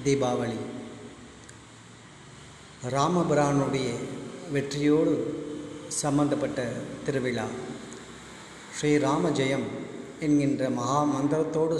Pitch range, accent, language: 125-145 Hz, native, Tamil